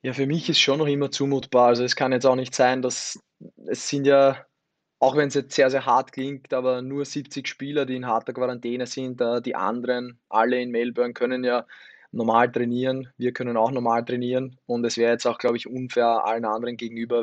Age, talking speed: 20-39, 215 wpm